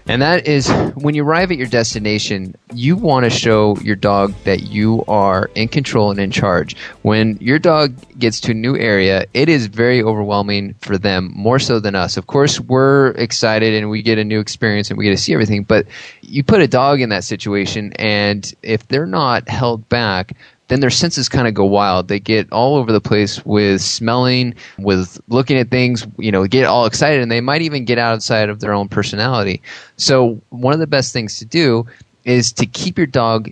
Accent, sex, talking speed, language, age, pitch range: American, male, 210 wpm, English, 20-39, 100-130 Hz